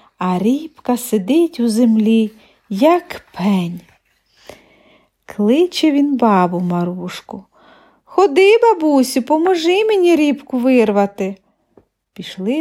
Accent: native